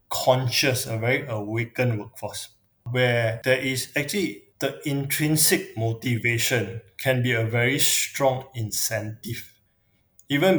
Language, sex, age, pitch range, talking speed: English, male, 20-39, 110-135 Hz, 110 wpm